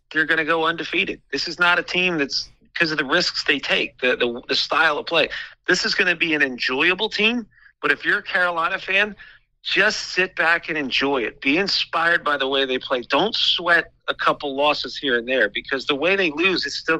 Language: English